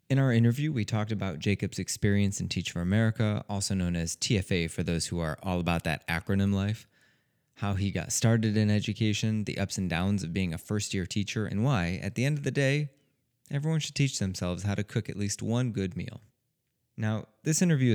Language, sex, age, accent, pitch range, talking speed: English, male, 20-39, American, 95-125 Hz, 210 wpm